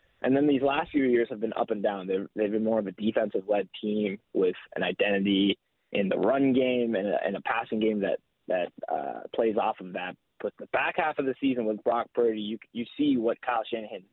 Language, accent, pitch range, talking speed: English, American, 100-120 Hz, 235 wpm